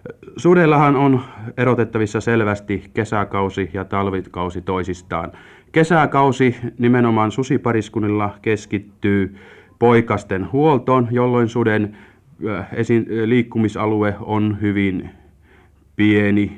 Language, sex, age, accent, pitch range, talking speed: Finnish, male, 30-49, native, 100-120 Hz, 70 wpm